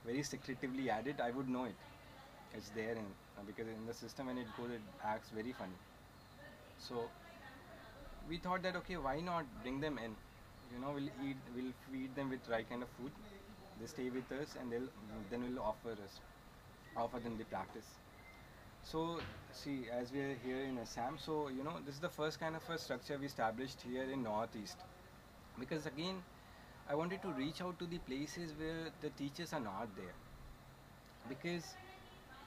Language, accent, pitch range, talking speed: English, Indian, 115-150 Hz, 185 wpm